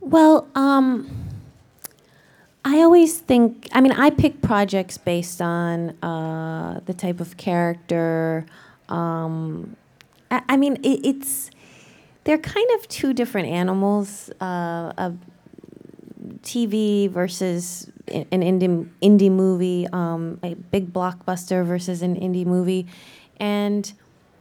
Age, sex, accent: 20-39, female, American